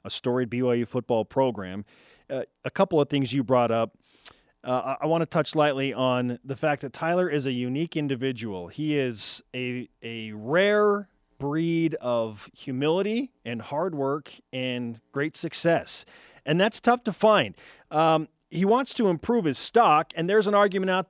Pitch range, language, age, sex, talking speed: 125-165 Hz, English, 30-49, male, 170 wpm